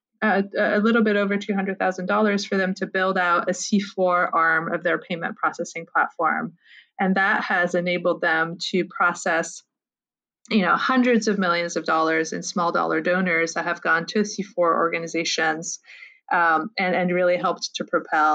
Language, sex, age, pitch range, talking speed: English, female, 20-39, 170-205 Hz, 180 wpm